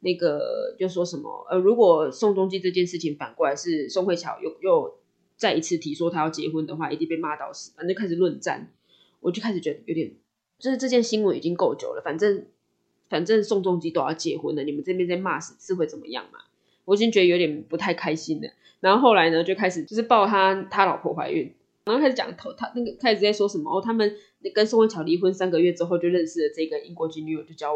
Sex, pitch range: female, 165-235 Hz